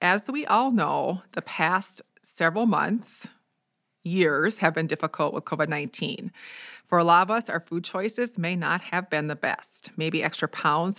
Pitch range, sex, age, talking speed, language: 160-210 Hz, female, 30-49, 170 wpm, English